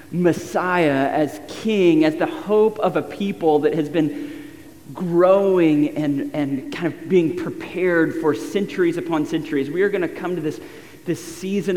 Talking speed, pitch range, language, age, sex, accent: 165 wpm, 155-195 Hz, English, 30-49, male, American